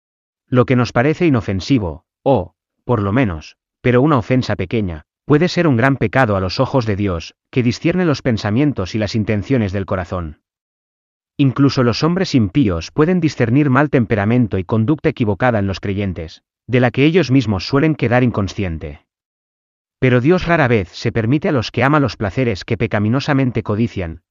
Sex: male